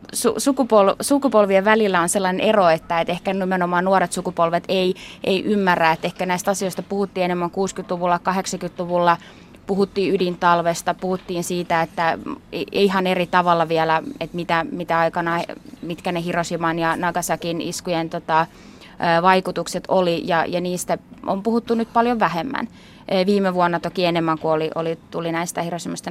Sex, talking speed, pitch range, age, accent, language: female, 145 wpm, 170-190 Hz, 20-39, native, Finnish